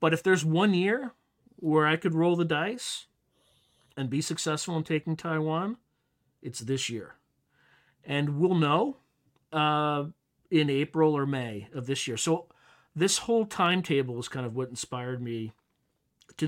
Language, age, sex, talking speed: English, 40-59, male, 155 wpm